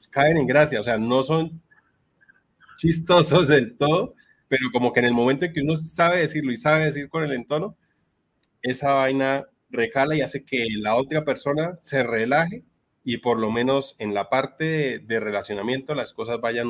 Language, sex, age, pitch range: Spanish, male, 30-49, 120-150 Hz